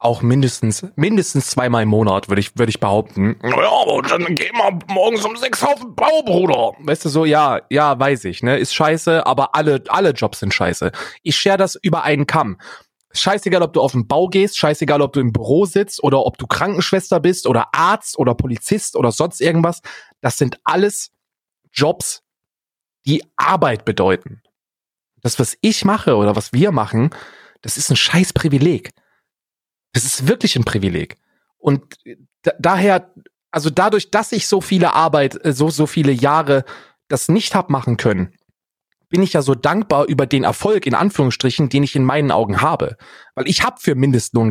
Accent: German